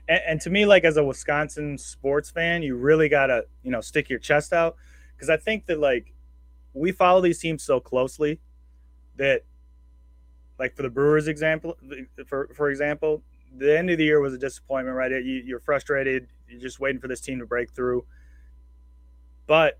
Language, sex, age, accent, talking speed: English, male, 20-39, American, 180 wpm